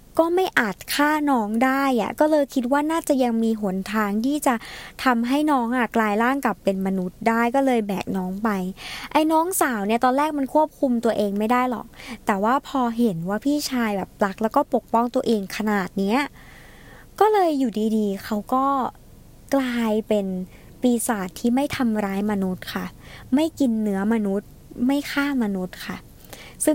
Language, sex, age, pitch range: Thai, male, 20-39, 210-270 Hz